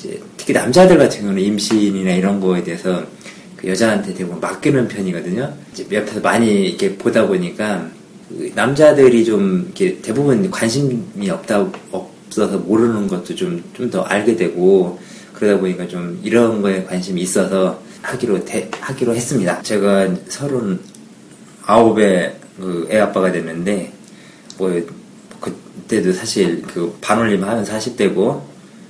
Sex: male